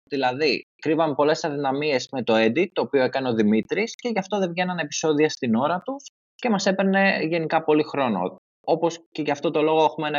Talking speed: 205 wpm